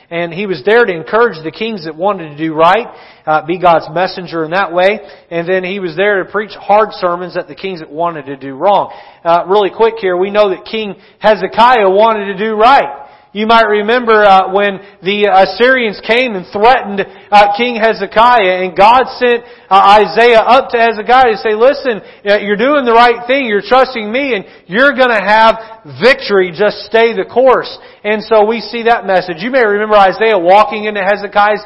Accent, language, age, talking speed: American, English, 40-59, 195 wpm